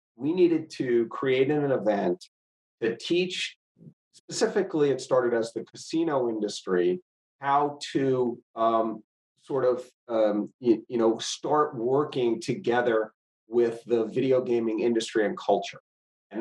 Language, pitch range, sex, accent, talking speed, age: English, 110-130 Hz, male, American, 130 wpm, 40-59